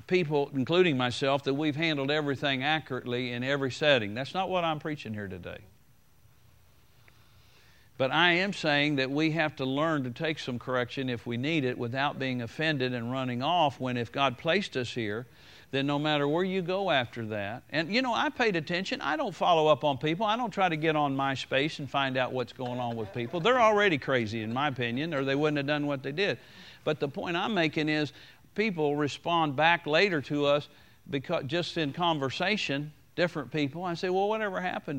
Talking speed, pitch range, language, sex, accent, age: 205 wpm, 130-165 Hz, English, male, American, 50-69